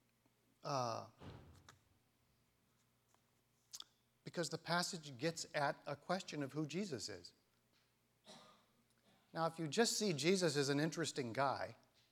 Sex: male